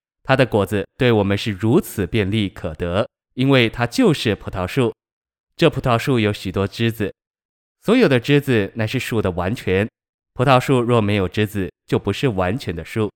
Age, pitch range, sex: 20-39, 100-120 Hz, male